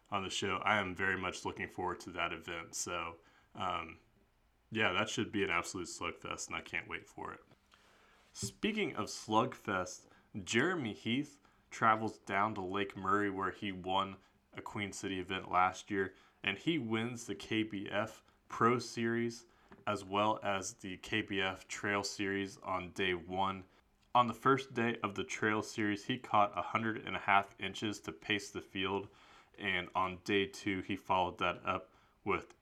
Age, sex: 20-39, male